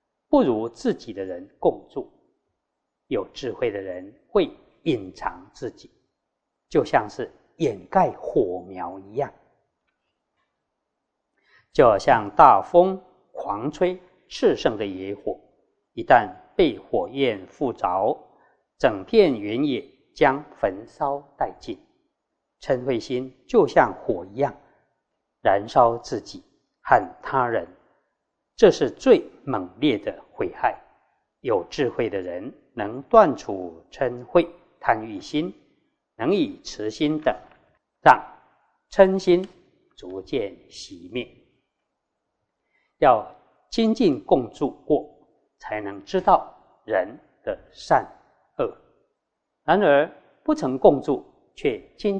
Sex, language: male, Chinese